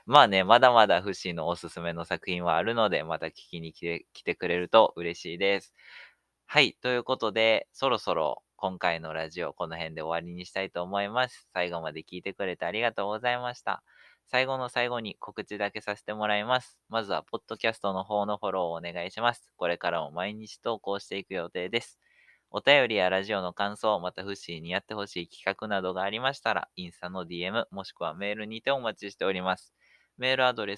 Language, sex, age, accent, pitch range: Japanese, male, 20-39, native, 90-115 Hz